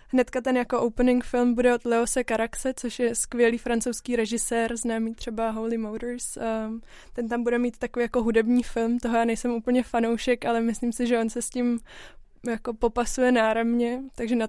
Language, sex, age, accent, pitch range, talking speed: Czech, female, 20-39, native, 230-245 Hz, 180 wpm